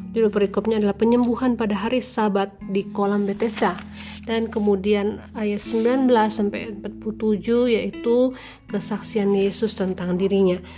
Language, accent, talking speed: Indonesian, native, 105 wpm